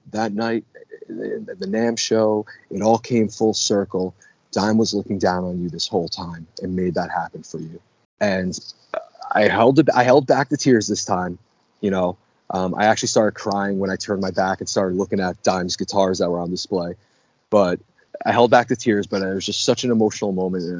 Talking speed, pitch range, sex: 210 wpm, 95-115 Hz, male